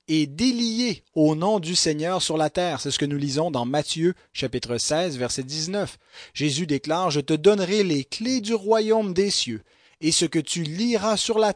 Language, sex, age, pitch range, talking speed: English, male, 30-49, 150-205 Hz, 195 wpm